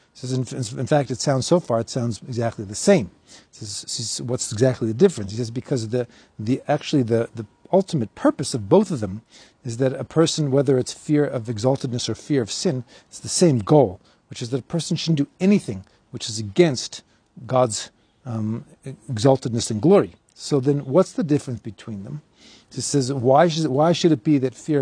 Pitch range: 120-155 Hz